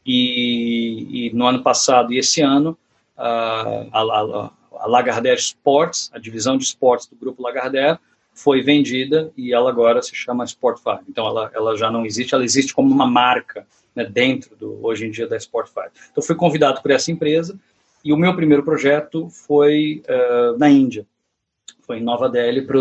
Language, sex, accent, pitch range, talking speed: Portuguese, male, Brazilian, 115-150 Hz, 175 wpm